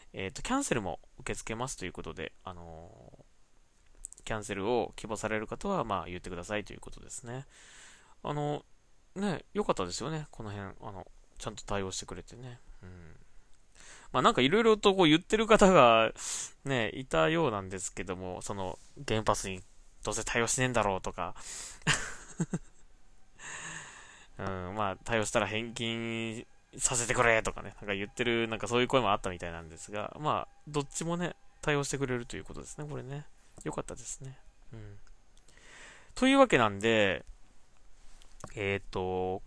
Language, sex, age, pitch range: Japanese, male, 20-39, 95-155 Hz